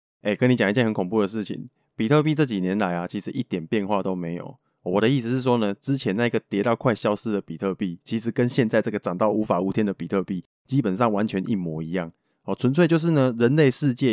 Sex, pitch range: male, 95-130 Hz